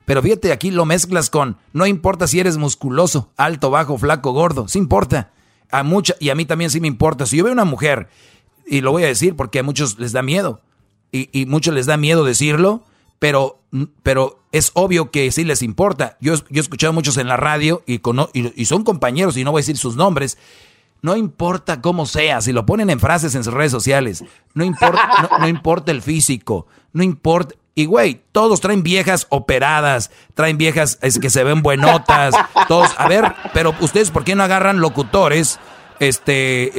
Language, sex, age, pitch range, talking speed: Spanish, male, 40-59, 130-175 Hz, 205 wpm